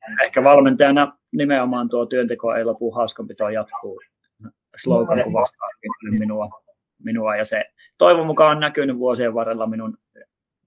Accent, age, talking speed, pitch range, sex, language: native, 20-39, 130 wpm, 115-145 Hz, male, Finnish